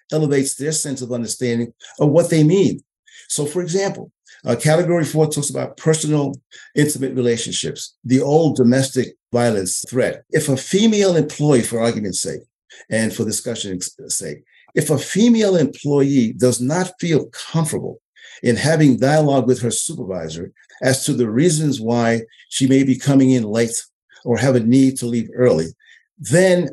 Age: 50-69